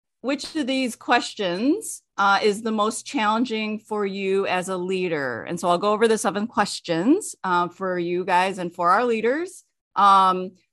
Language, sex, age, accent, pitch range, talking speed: English, female, 30-49, American, 195-265 Hz, 175 wpm